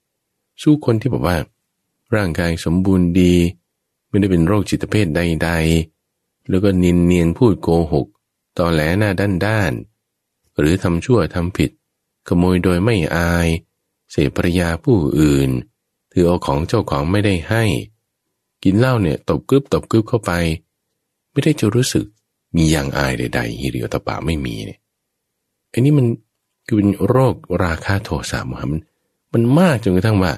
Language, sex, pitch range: English, male, 80-110 Hz